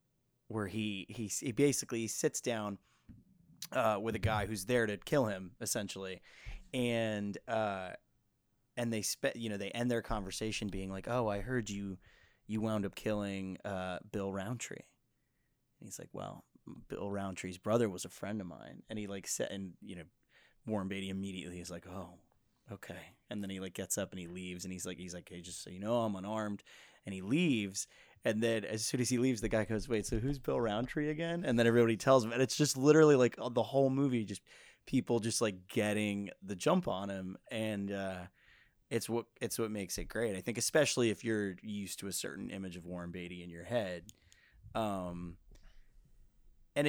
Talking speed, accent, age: 200 wpm, American, 20-39